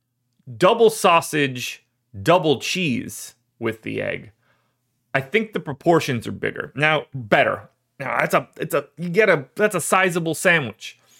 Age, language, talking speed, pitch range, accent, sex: 30-49, English, 145 wpm, 120-165 Hz, American, male